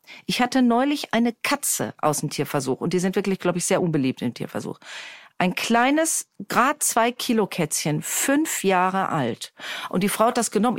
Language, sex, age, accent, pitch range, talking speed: German, female, 40-59, German, 185-255 Hz, 185 wpm